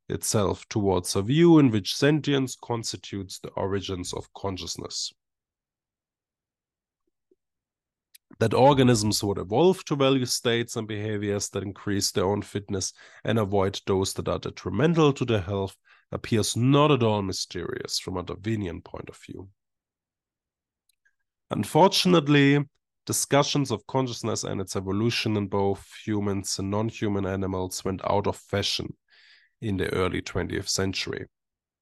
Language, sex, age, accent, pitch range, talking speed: English, male, 20-39, German, 95-130 Hz, 130 wpm